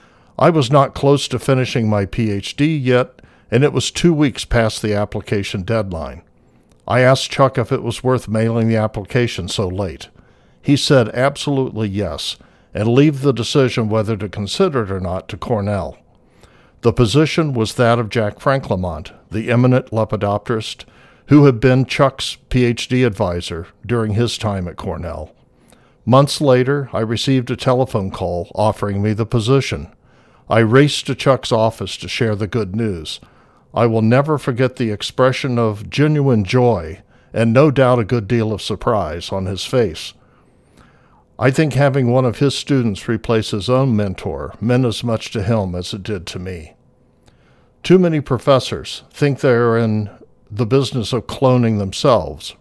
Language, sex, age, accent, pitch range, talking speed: English, male, 60-79, American, 105-130 Hz, 160 wpm